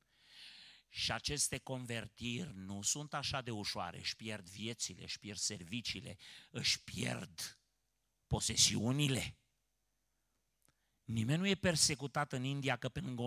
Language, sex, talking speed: Romanian, male, 120 wpm